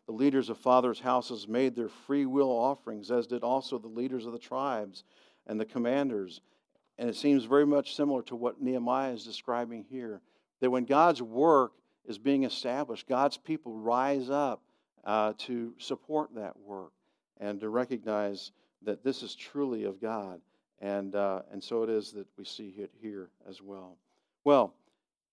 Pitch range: 110-140 Hz